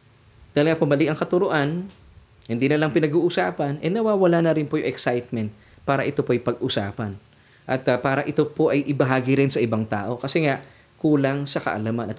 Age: 20-39